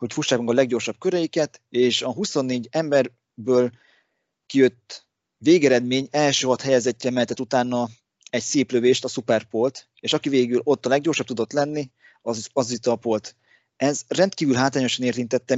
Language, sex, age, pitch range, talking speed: Hungarian, male, 30-49, 115-140 Hz, 140 wpm